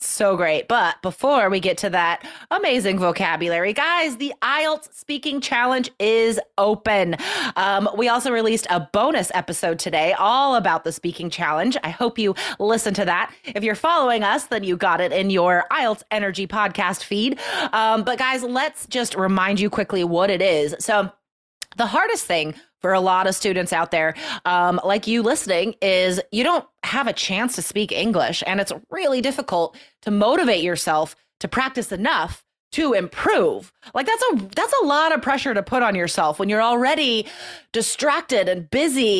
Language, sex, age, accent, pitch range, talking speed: English, female, 30-49, American, 190-270 Hz, 175 wpm